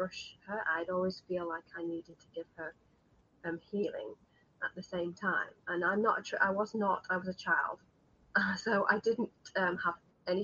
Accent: British